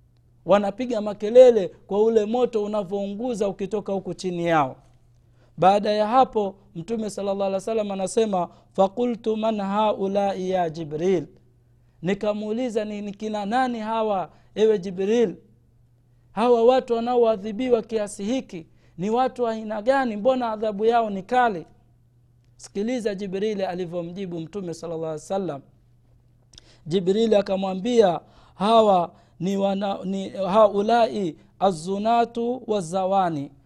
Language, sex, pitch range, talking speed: Swahili, male, 175-220 Hz, 105 wpm